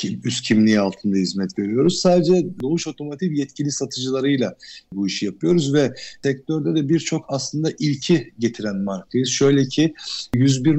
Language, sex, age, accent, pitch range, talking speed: Turkish, male, 50-69, native, 120-150 Hz, 140 wpm